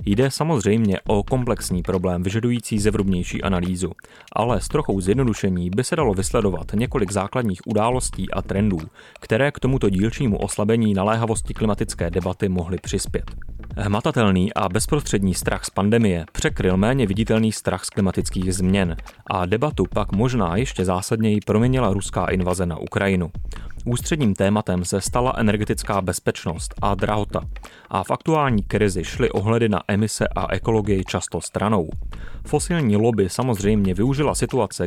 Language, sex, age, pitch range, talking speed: Czech, male, 30-49, 95-115 Hz, 140 wpm